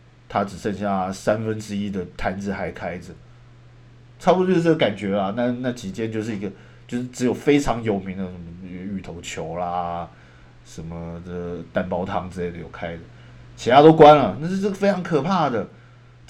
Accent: native